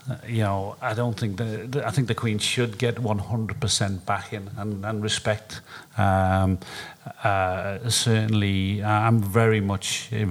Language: English